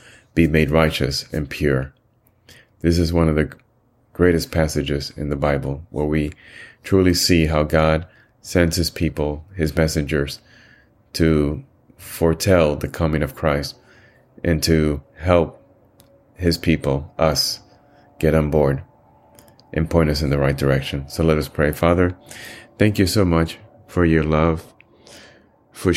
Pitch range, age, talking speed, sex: 75-85 Hz, 30-49, 140 wpm, male